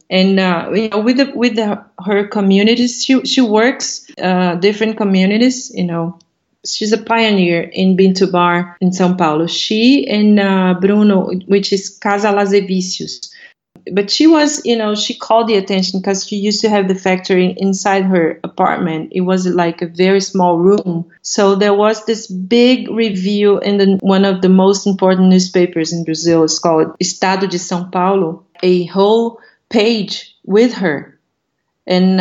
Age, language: 40-59, English